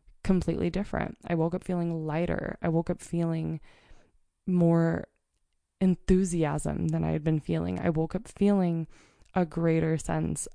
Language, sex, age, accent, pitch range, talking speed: English, female, 20-39, American, 155-180 Hz, 140 wpm